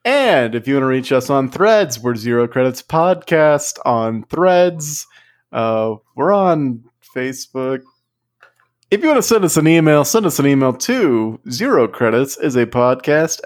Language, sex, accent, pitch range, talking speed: English, male, American, 120-160 Hz, 160 wpm